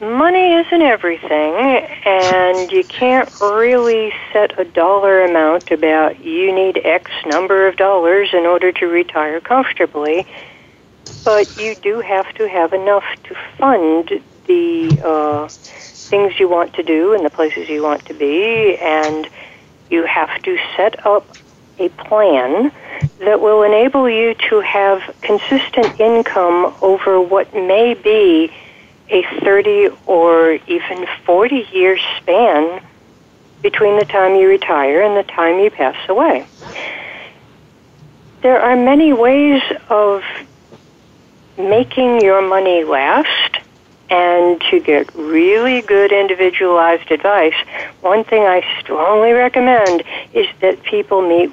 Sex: female